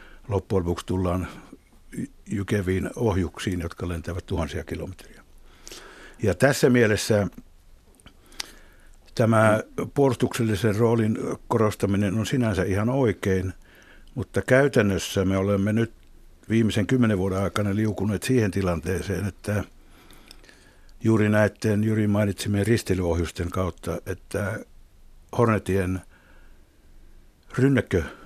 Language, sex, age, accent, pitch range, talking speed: Finnish, male, 60-79, native, 90-105 Hz, 90 wpm